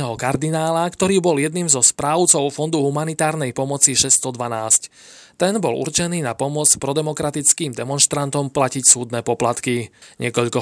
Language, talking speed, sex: Slovak, 120 wpm, male